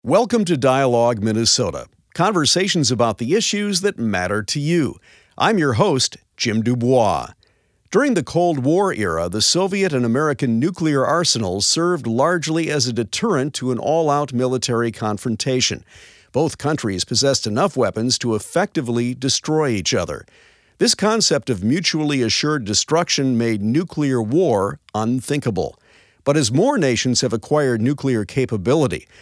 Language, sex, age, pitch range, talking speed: English, male, 50-69, 115-160 Hz, 135 wpm